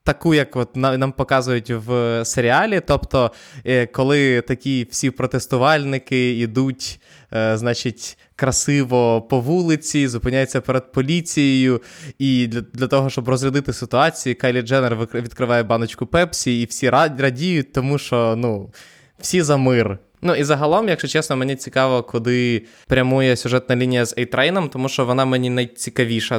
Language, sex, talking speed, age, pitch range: Ukrainian, male, 135 wpm, 20-39, 115-145 Hz